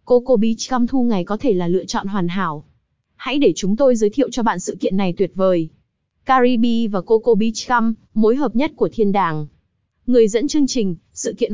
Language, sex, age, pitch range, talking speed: Vietnamese, female, 20-39, 195-245 Hz, 220 wpm